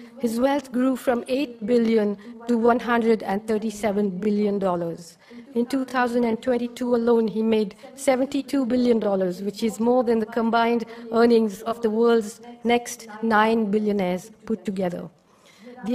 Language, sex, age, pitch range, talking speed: English, female, 50-69, 210-240 Hz, 120 wpm